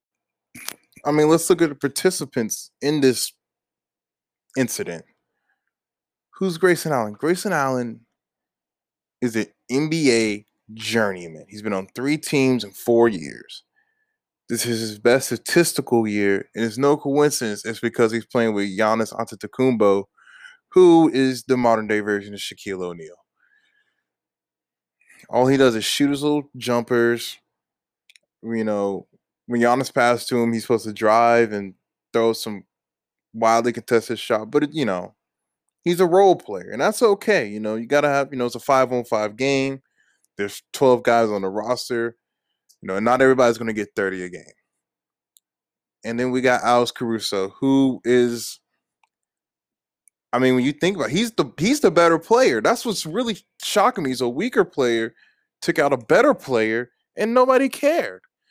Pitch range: 110-150 Hz